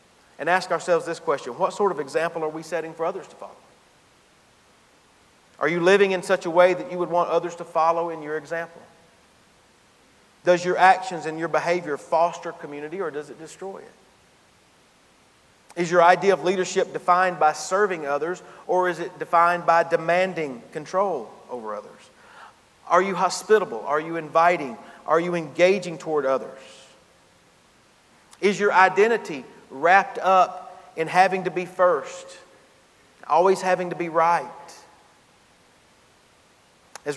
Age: 40-59